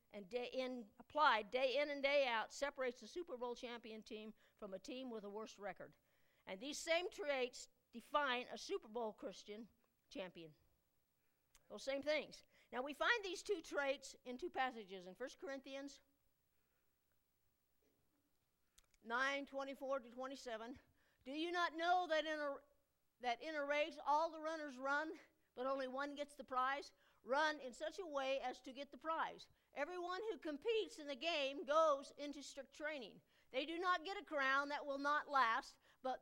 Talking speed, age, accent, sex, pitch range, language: 170 wpm, 50-69, American, female, 250-315 Hz, English